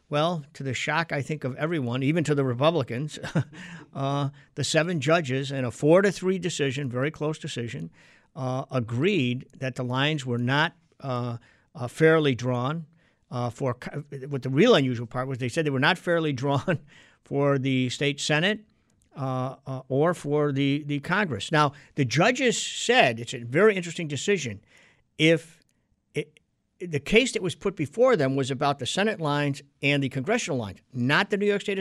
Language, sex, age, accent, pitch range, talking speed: English, male, 50-69, American, 135-170 Hz, 175 wpm